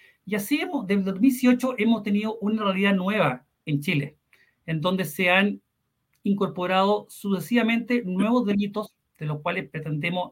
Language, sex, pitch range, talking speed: Spanish, male, 155-210 Hz, 145 wpm